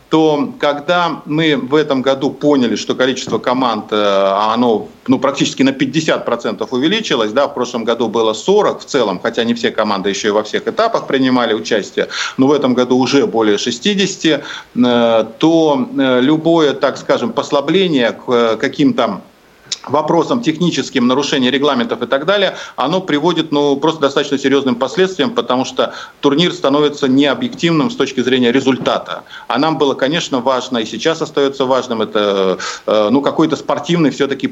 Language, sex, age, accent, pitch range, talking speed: Russian, male, 50-69, native, 125-155 Hz, 150 wpm